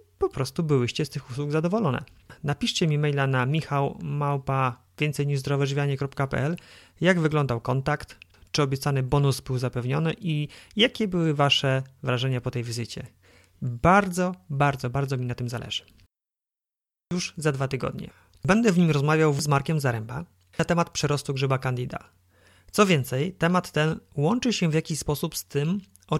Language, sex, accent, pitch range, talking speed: Polish, male, native, 135-170 Hz, 145 wpm